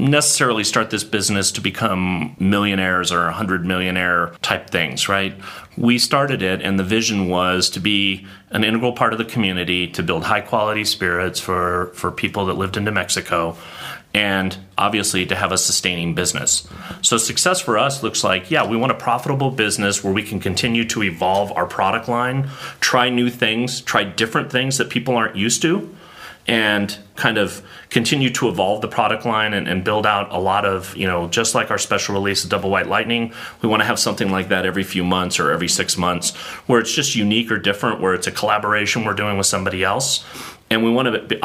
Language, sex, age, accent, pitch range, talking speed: English, male, 30-49, American, 95-115 Hz, 205 wpm